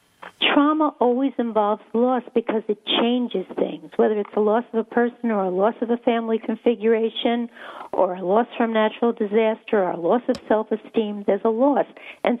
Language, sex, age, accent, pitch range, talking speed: English, female, 50-69, American, 220-265 Hz, 180 wpm